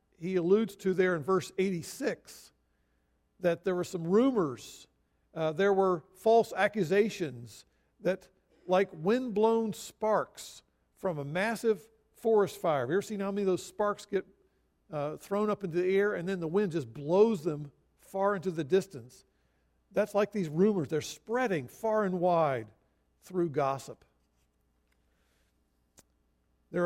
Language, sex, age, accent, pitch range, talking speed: English, male, 50-69, American, 145-200 Hz, 145 wpm